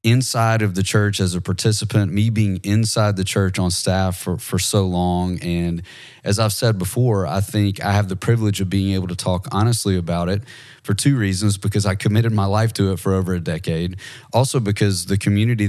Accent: American